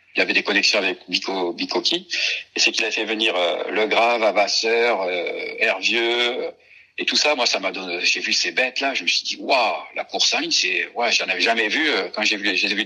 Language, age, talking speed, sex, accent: French, 60-79, 240 wpm, male, French